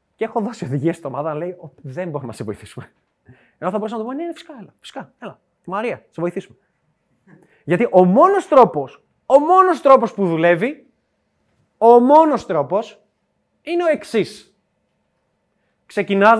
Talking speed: 160 wpm